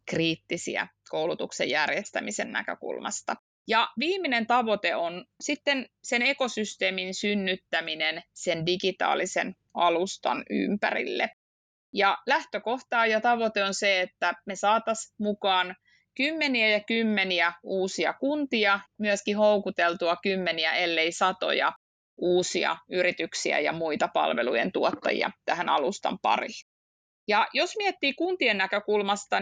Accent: native